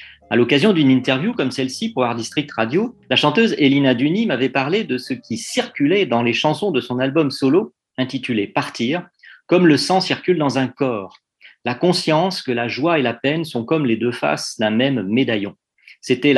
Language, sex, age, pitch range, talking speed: French, male, 40-59, 115-160 Hz, 195 wpm